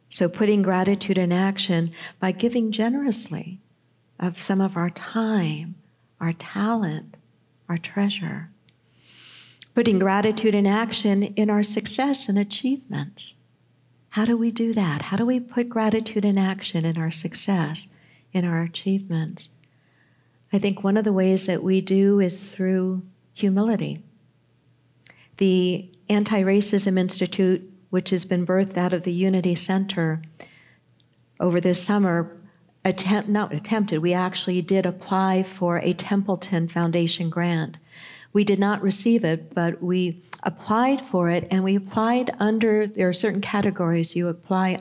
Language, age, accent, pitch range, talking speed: English, 50-69, American, 175-210 Hz, 140 wpm